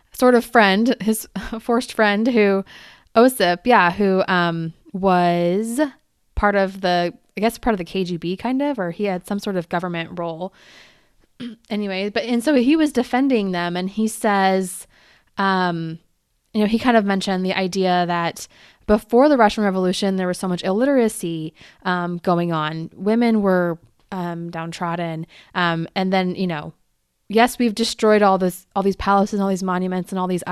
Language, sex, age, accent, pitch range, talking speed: English, female, 20-39, American, 180-220 Hz, 175 wpm